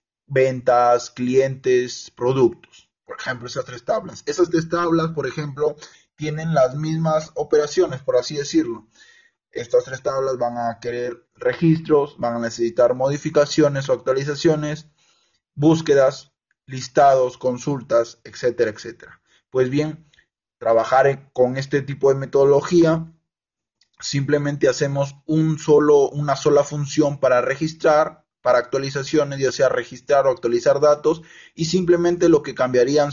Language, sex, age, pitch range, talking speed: Spanish, male, 20-39, 125-155 Hz, 120 wpm